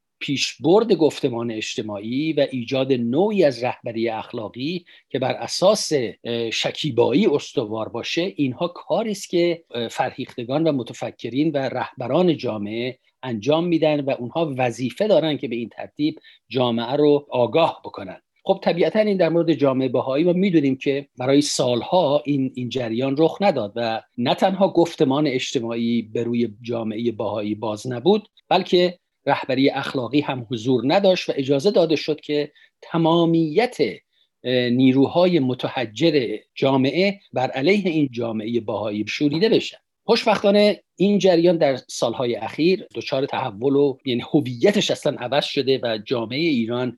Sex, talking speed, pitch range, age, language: male, 135 wpm, 120-165 Hz, 50-69, Persian